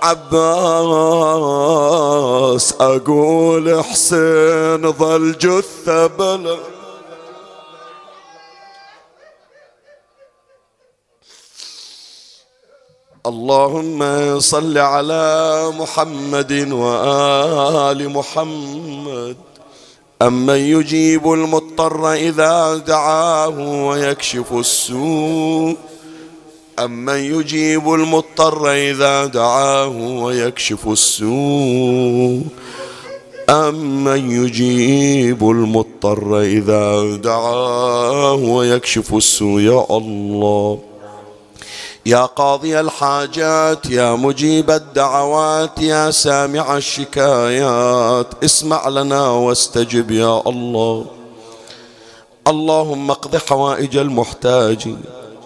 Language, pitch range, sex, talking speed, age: Arabic, 120-160 Hz, male, 55 wpm, 50-69